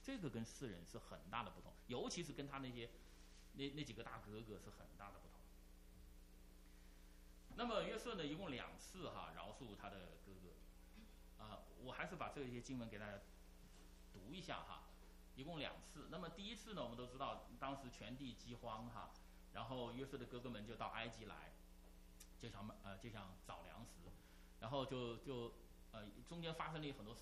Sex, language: male, English